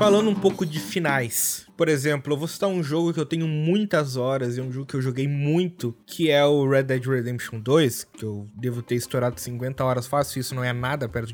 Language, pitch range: Portuguese, 140-185 Hz